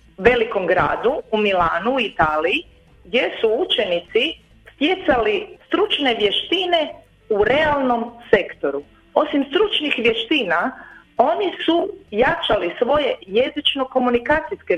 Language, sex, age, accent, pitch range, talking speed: Croatian, female, 40-59, native, 195-315 Hz, 95 wpm